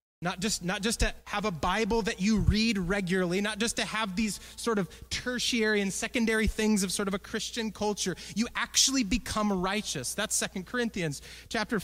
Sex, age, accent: male, 30-49, American